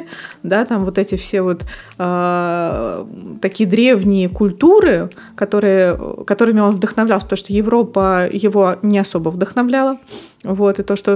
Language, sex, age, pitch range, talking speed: Russian, female, 20-39, 185-225 Hz, 135 wpm